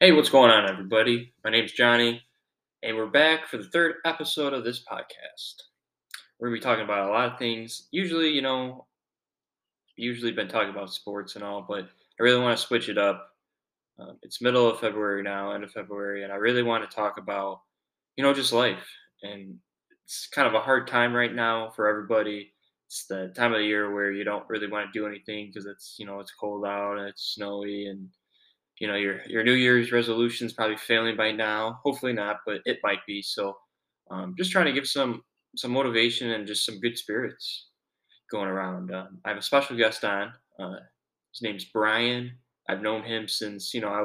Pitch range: 100-120 Hz